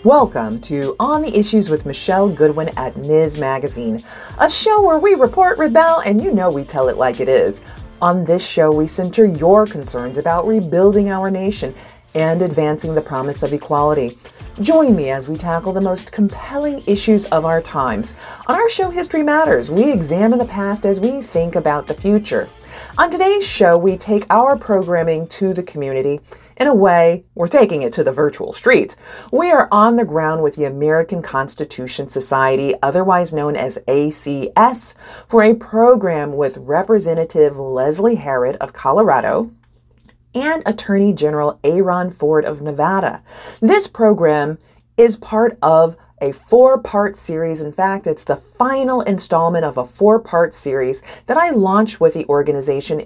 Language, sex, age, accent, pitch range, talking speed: English, female, 40-59, American, 150-225 Hz, 165 wpm